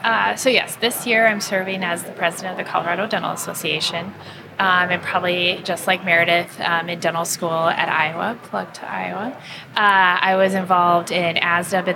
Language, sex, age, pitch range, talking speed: English, female, 20-39, 170-200 Hz, 185 wpm